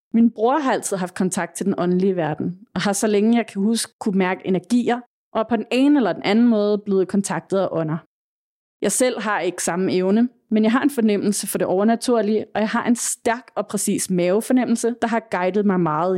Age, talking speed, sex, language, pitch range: 30-49, 225 wpm, female, Danish, 185-230 Hz